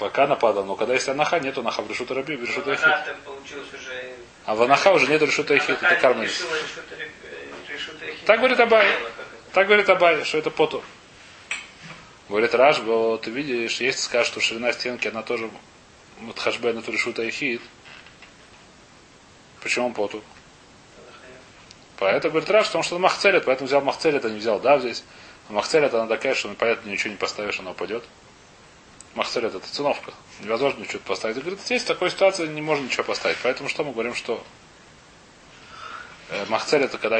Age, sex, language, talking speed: 30-49, male, Russian, 145 wpm